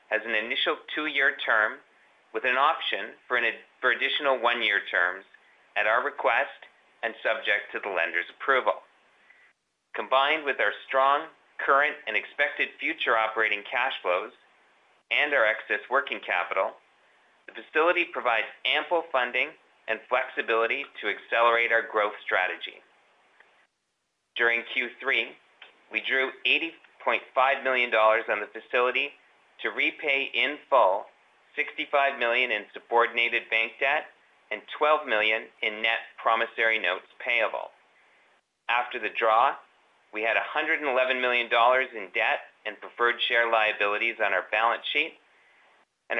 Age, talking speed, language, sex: 30-49, 125 wpm, English, male